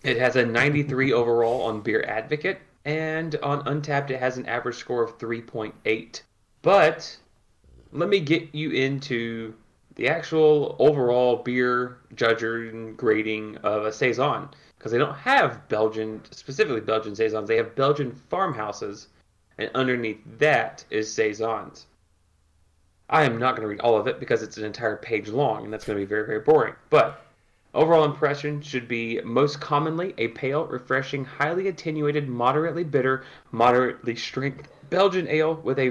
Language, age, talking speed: English, 30-49, 155 wpm